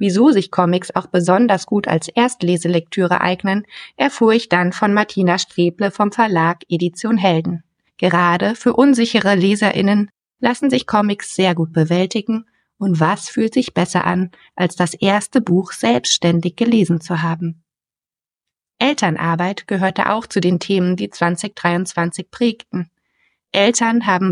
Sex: female